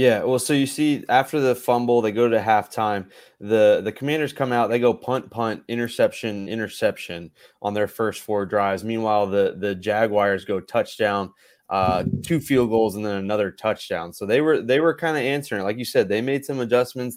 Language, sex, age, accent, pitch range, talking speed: English, male, 20-39, American, 105-125 Hz, 205 wpm